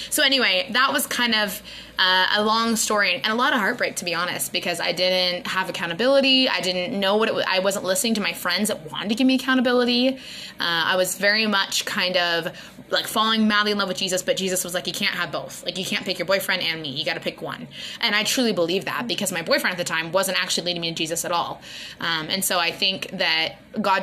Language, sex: English, female